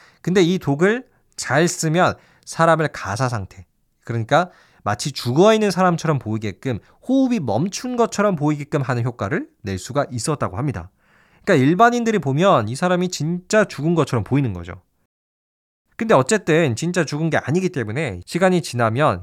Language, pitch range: Korean, 115-175 Hz